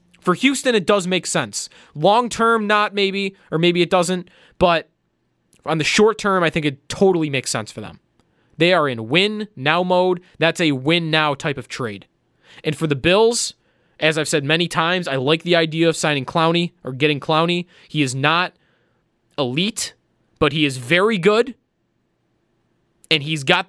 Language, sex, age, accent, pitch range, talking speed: English, male, 20-39, American, 155-220 Hz, 170 wpm